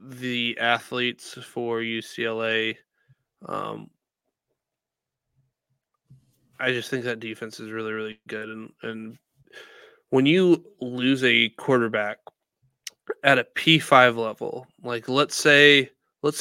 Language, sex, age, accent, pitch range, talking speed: English, male, 20-39, American, 120-140 Hz, 110 wpm